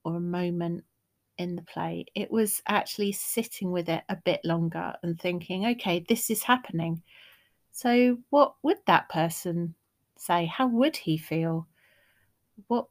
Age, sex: 30-49, female